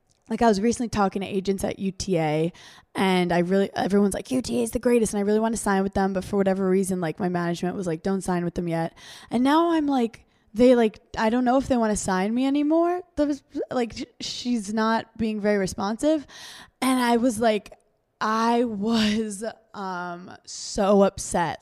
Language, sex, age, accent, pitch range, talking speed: English, female, 20-39, American, 195-255 Hz, 205 wpm